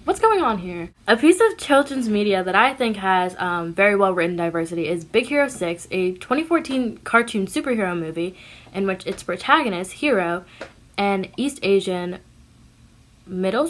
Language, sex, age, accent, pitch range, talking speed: English, female, 10-29, American, 180-230 Hz, 160 wpm